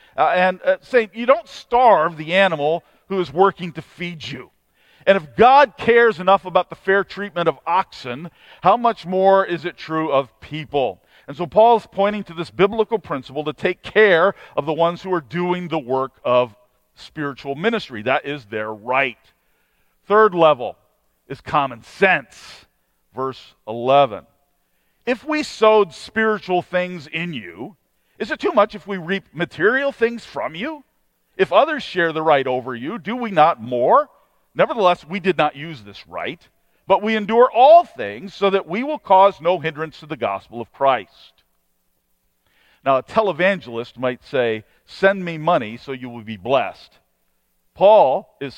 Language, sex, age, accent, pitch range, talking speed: English, male, 50-69, American, 135-200 Hz, 170 wpm